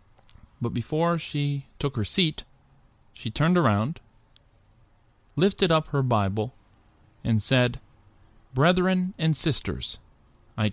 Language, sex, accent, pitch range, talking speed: English, male, American, 105-140 Hz, 105 wpm